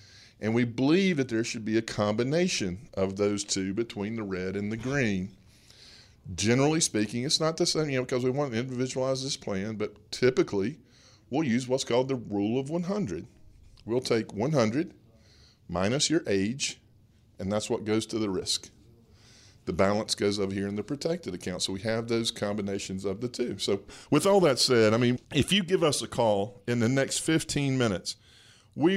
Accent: American